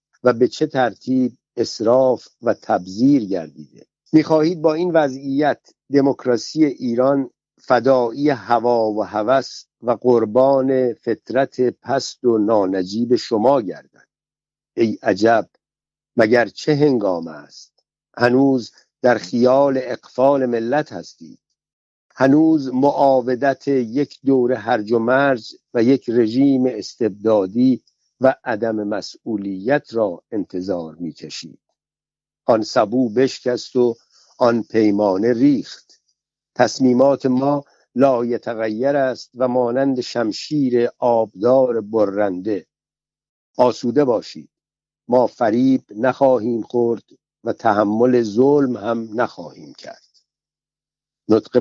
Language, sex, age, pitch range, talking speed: Persian, male, 60-79, 115-135 Hz, 100 wpm